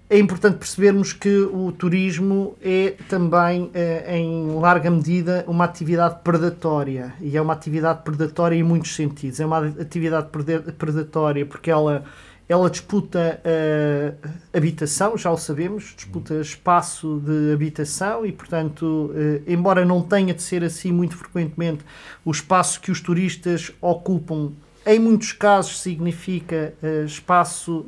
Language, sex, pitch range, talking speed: Portuguese, male, 160-180 Hz, 130 wpm